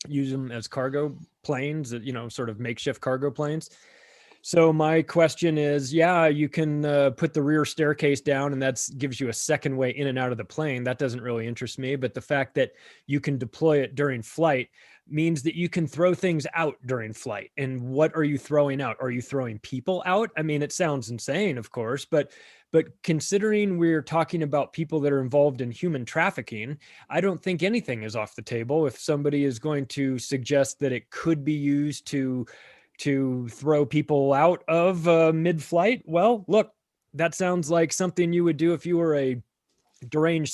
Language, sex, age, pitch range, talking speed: English, male, 20-39, 135-165 Hz, 200 wpm